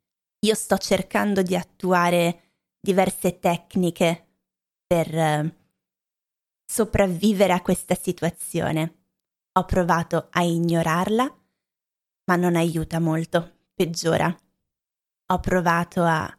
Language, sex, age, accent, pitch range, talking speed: Italian, female, 20-39, native, 170-200 Hz, 90 wpm